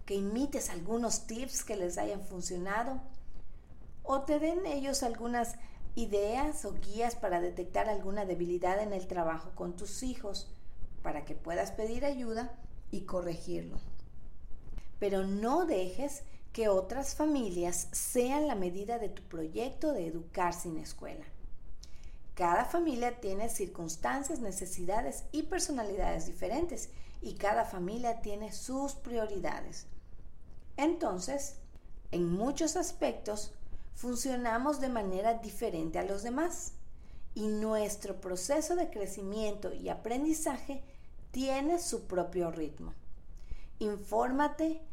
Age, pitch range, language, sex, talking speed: 40-59, 180-270 Hz, Spanish, female, 115 wpm